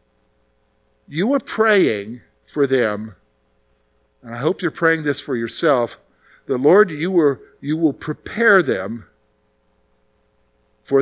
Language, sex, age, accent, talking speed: English, male, 50-69, American, 115 wpm